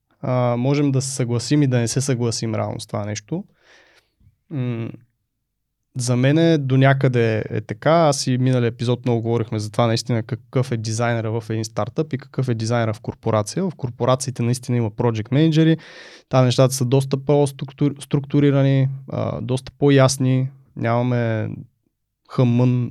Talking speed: 155 wpm